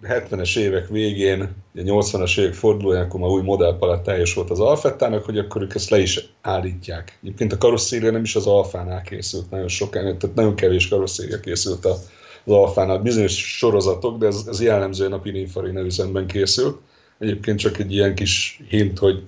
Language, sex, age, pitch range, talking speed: Hungarian, male, 30-49, 90-105 Hz, 170 wpm